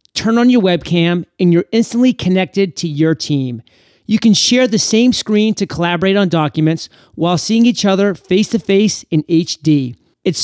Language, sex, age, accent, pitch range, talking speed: English, male, 30-49, American, 155-215 Hz, 165 wpm